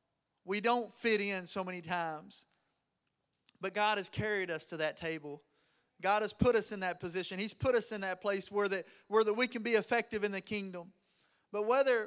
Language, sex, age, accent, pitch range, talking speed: English, male, 30-49, American, 195-245 Hz, 205 wpm